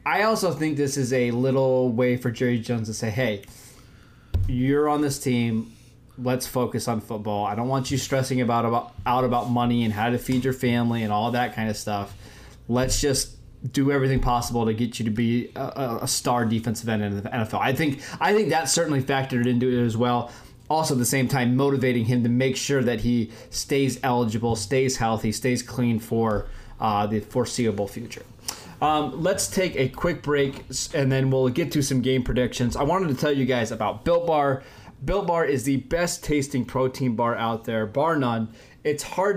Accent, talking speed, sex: American, 200 wpm, male